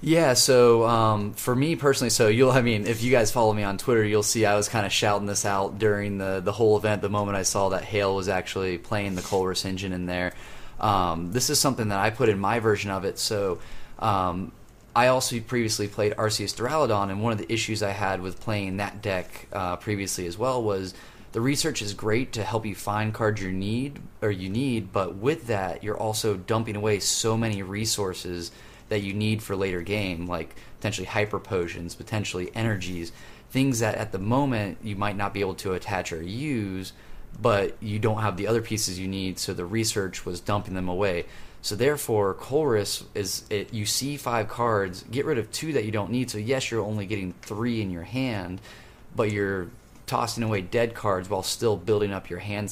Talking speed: 210 wpm